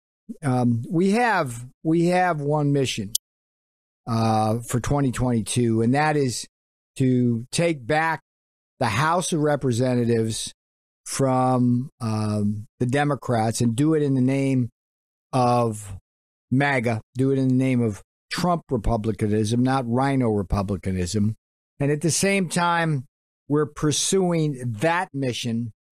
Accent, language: American, English